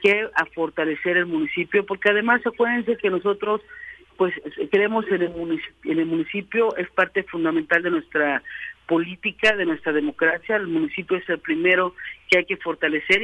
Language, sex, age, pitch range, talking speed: Spanish, female, 50-69, 165-200 Hz, 165 wpm